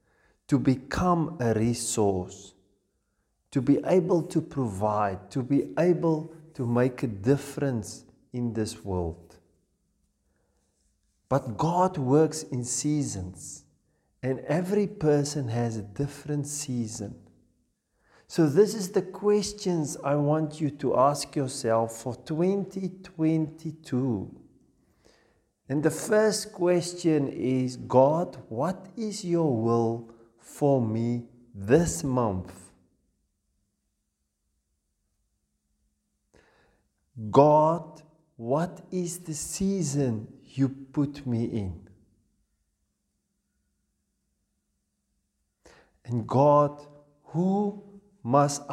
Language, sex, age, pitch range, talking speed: English, male, 50-69, 105-160 Hz, 85 wpm